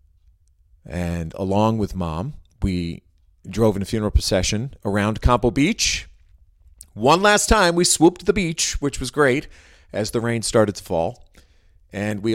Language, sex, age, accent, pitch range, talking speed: English, male, 40-59, American, 80-115 Hz, 155 wpm